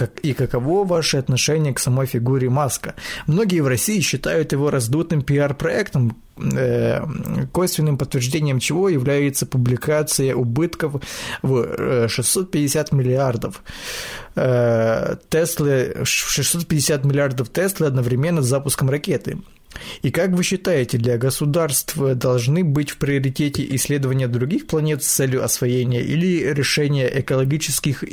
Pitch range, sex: 130-155 Hz, male